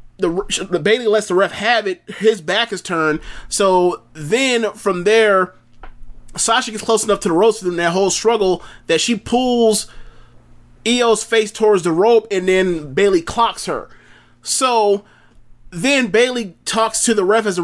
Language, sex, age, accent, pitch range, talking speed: English, male, 30-49, American, 170-225 Hz, 165 wpm